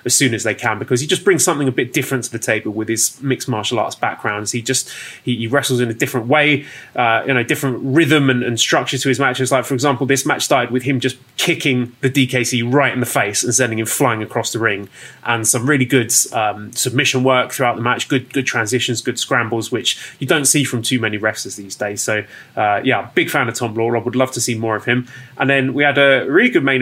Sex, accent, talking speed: male, British, 255 wpm